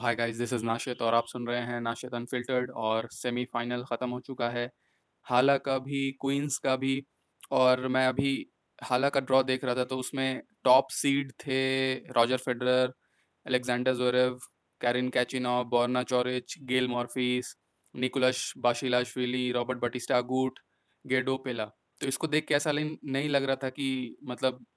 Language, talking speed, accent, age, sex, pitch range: Hindi, 150 wpm, native, 20-39, male, 125-135 Hz